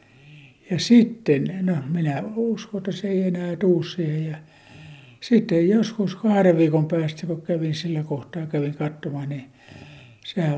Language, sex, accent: Finnish, male, native